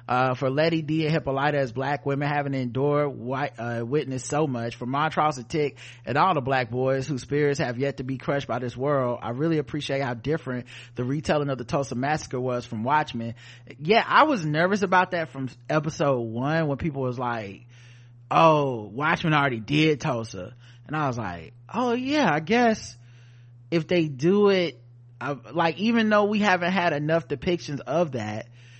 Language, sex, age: English, male, 30-49